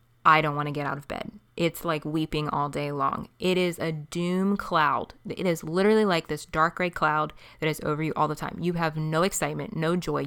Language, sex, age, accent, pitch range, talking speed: English, female, 20-39, American, 145-175 Hz, 235 wpm